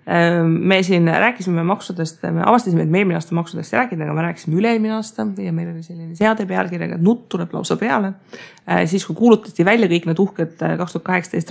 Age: 20-39